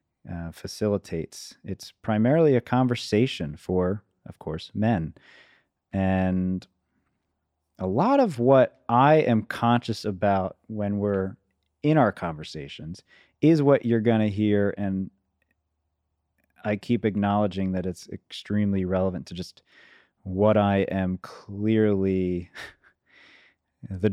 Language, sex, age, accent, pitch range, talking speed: English, male, 30-49, American, 95-125 Hz, 110 wpm